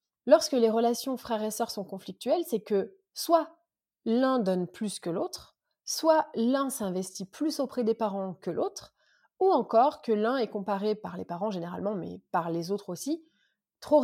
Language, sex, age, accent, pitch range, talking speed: French, female, 30-49, French, 195-260 Hz, 175 wpm